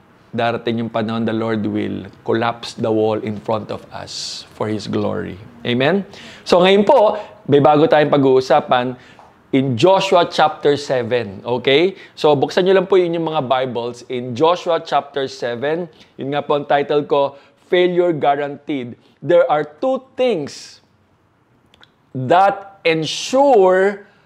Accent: native